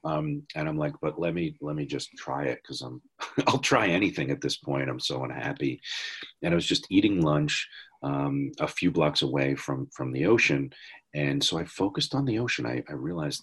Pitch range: 70-105 Hz